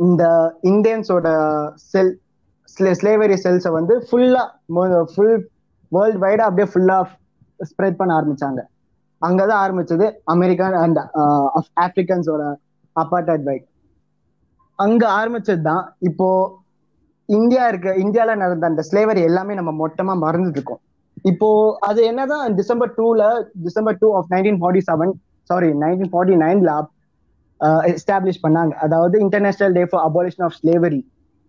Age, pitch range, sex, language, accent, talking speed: 20-39, 165-205 Hz, male, Tamil, native, 85 wpm